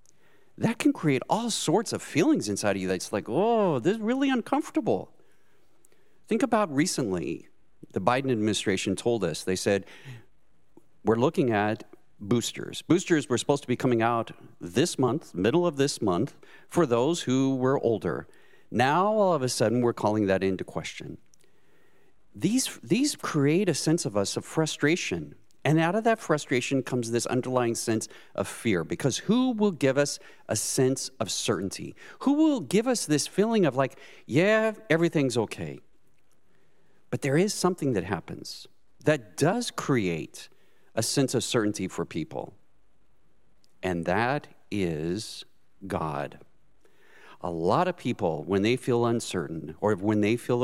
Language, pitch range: English, 110-175 Hz